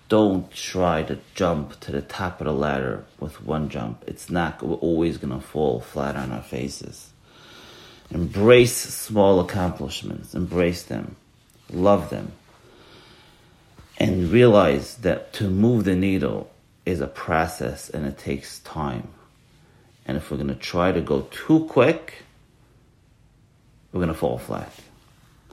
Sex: male